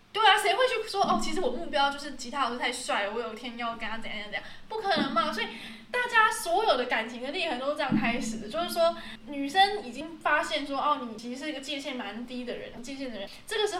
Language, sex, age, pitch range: Chinese, female, 10-29, 240-315 Hz